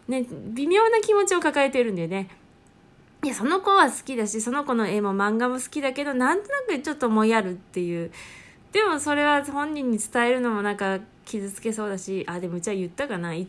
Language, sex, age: Japanese, female, 20-39